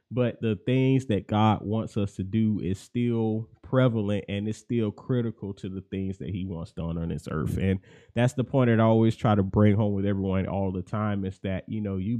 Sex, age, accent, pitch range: male, 20-39, American, 100-115 Hz